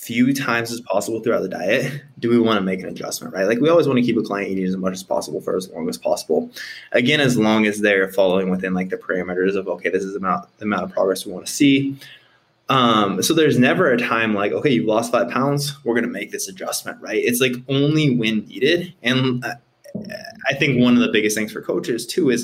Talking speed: 245 wpm